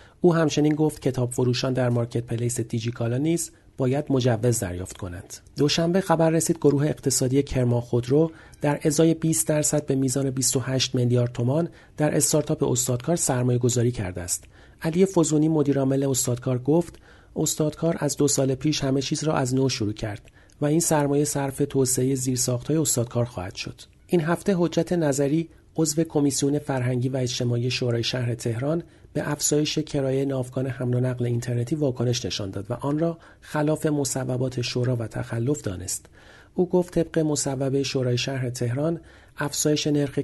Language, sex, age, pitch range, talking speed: Persian, male, 40-59, 120-150 Hz, 155 wpm